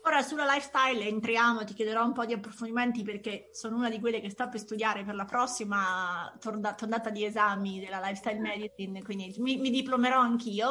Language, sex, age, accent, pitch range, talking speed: Italian, female, 30-49, native, 205-245 Hz, 190 wpm